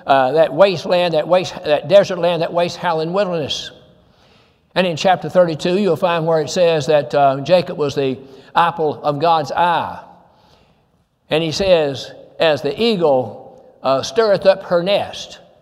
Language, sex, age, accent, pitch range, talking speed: English, male, 60-79, American, 150-190 Hz, 160 wpm